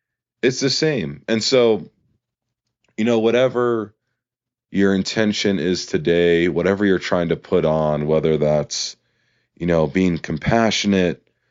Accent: American